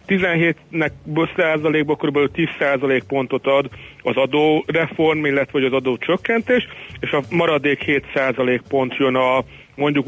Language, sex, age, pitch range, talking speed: Hungarian, male, 30-49, 130-155 Hz, 120 wpm